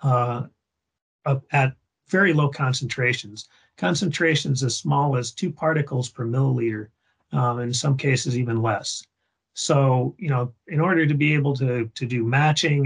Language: English